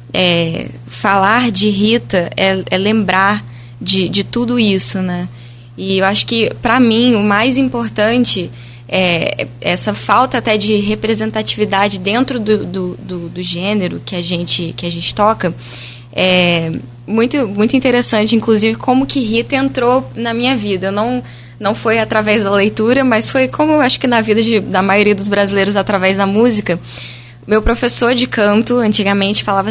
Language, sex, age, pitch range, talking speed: Portuguese, female, 10-29, 185-230 Hz, 160 wpm